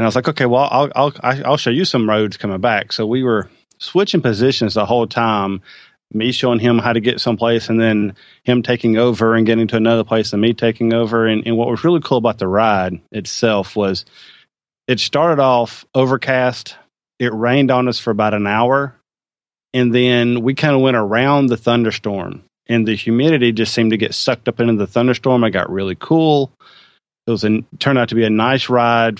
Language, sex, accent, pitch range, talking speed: English, male, American, 110-125 Hz, 210 wpm